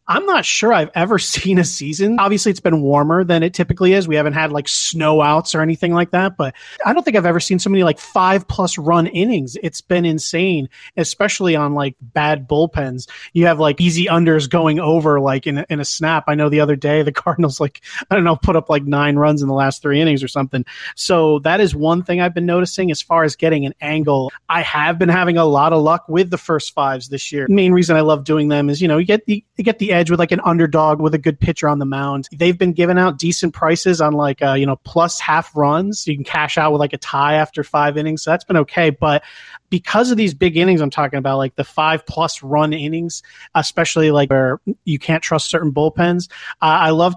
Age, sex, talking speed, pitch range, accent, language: 30-49, male, 245 wpm, 145-175 Hz, American, English